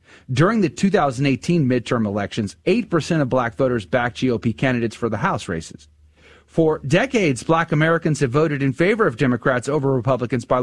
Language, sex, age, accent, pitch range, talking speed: English, male, 40-59, American, 130-170 Hz, 165 wpm